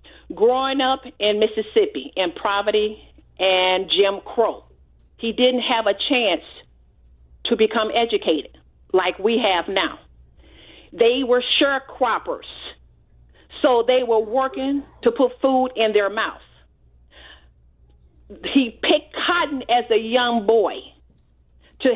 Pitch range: 185-250 Hz